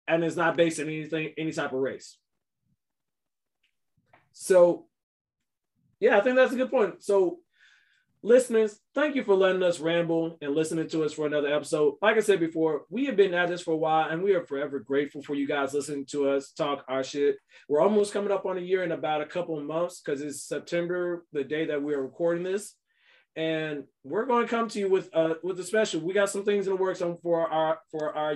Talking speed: 220 wpm